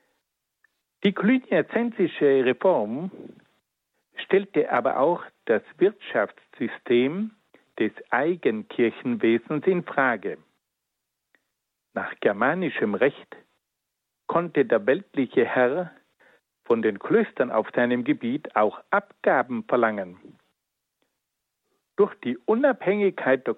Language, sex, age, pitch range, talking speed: German, male, 60-79, 130-200 Hz, 80 wpm